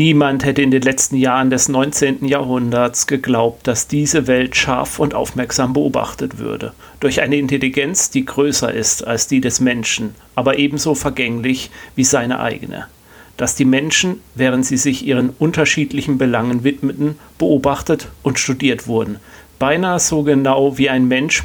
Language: German